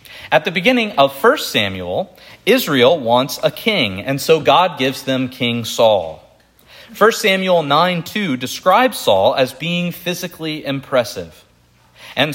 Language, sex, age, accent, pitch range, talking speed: English, male, 40-59, American, 120-185 Hz, 130 wpm